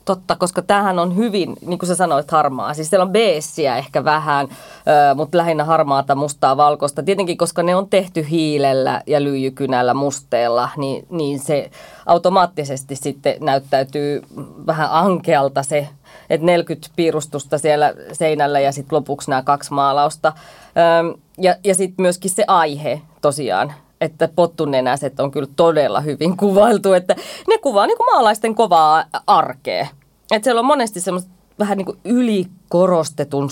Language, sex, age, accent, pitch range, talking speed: Finnish, female, 20-39, native, 140-175 Hz, 145 wpm